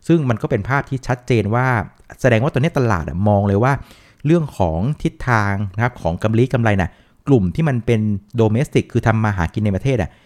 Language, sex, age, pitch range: Thai, male, 60-79, 95-130 Hz